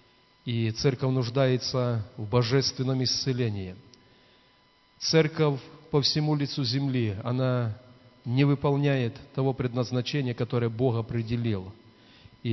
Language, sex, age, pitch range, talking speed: Russian, male, 30-49, 120-145 Hz, 95 wpm